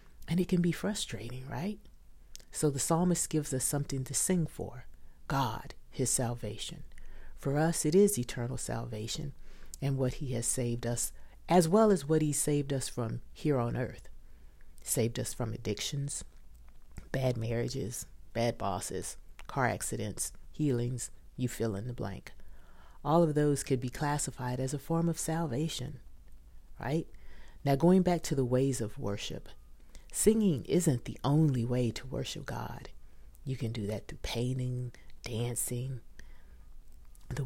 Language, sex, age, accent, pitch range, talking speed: English, female, 40-59, American, 100-140 Hz, 150 wpm